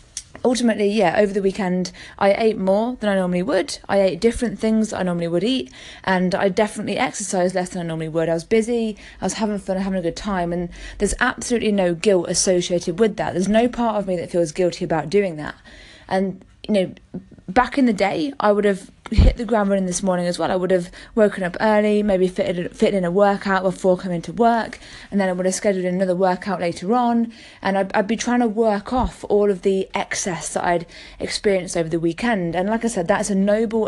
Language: English